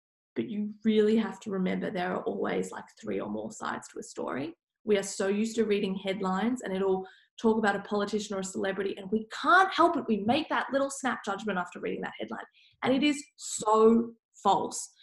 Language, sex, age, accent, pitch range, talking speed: English, female, 10-29, Australian, 200-265 Hz, 210 wpm